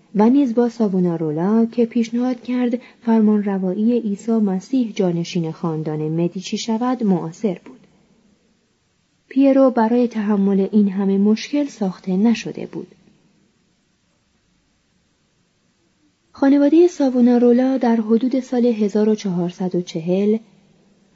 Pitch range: 185-230 Hz